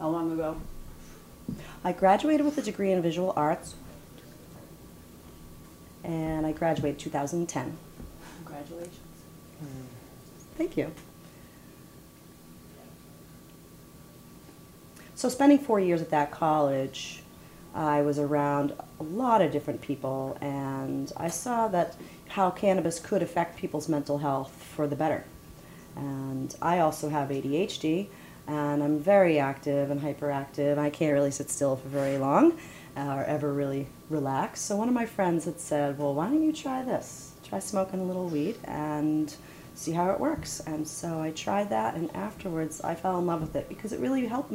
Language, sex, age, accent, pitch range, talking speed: English, female, 30-49, American, 145-175 Hz, 150 wpm